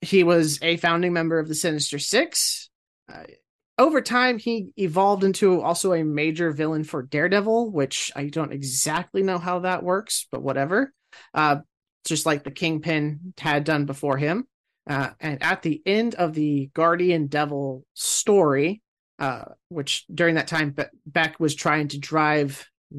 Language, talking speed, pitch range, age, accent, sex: English, 155 wpm, 140-175 Hz, 30-49, American, male